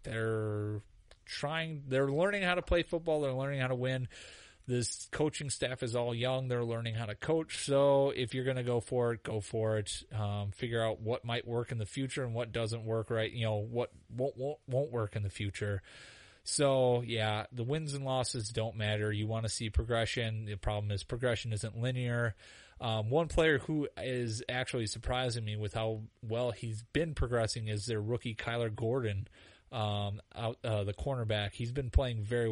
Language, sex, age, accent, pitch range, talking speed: English, male, 30-49, American, 105-125 Hz, 195 wpm